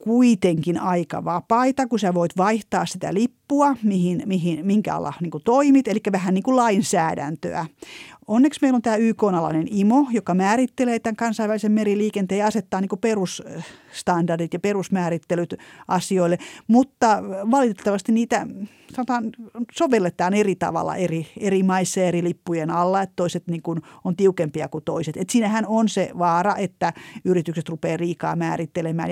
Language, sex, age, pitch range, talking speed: Finnish, female, 30-49, 170-230 Hz, 135 wpm